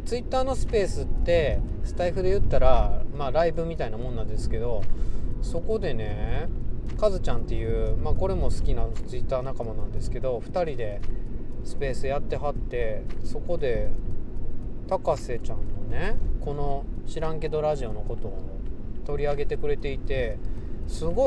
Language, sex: Japanese, male